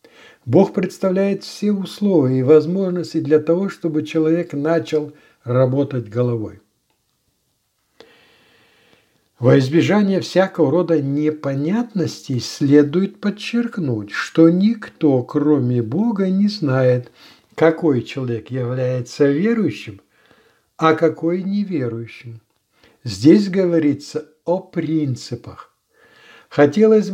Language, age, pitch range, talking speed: Russian, 60-79, 130-185 Hz, 85 wpm